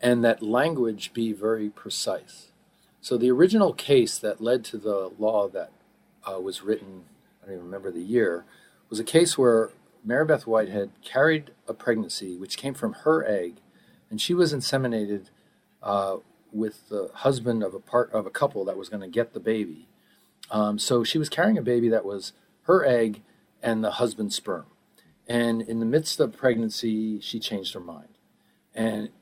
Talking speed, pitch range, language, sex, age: 175 wpm, 110-140 Hz, English, male, 40-59